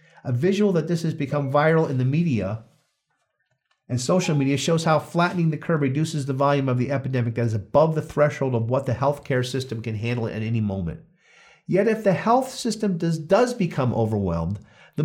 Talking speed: 195 wpm